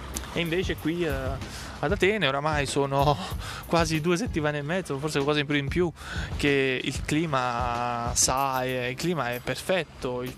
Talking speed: 155 wpm